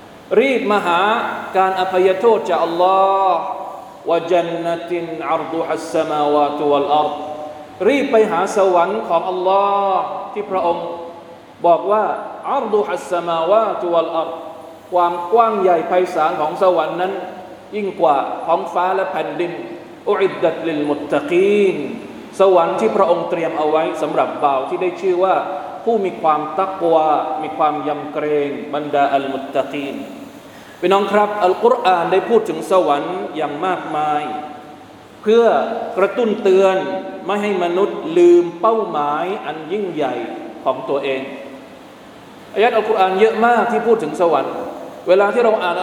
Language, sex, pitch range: Thai, male, 160-215 Hz